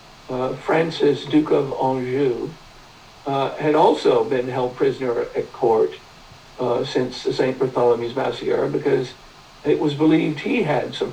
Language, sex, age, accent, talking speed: English, male, 60-79, American, 140 wpm